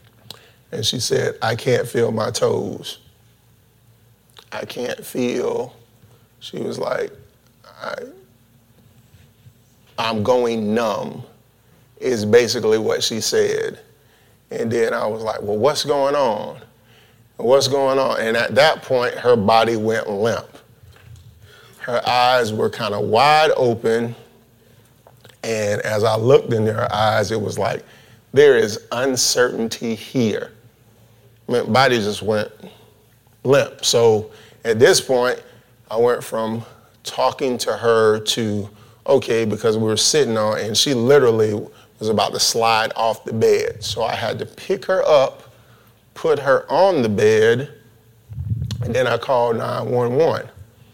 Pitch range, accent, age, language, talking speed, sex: 115-140 Hz, American, 30-49, English, 130 wpm, male